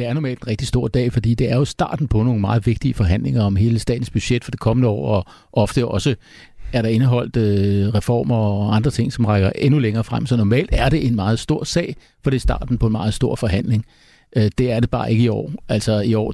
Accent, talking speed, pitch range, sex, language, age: native, 245 wpm, 110-125 Hz, male, Danish, 60-79